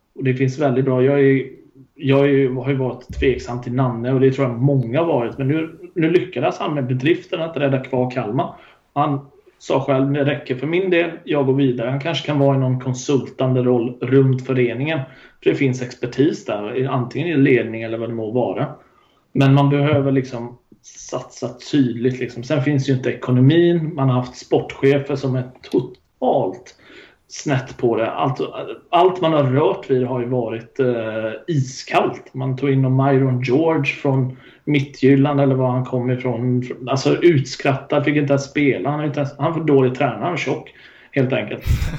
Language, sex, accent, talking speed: Swedish, male, native, 185 wpm